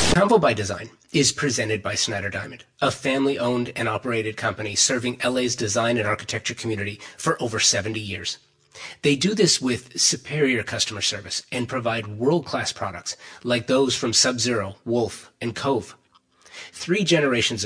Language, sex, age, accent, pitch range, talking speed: English, male, 30-49, American, 100-125 Hz, 155 wpm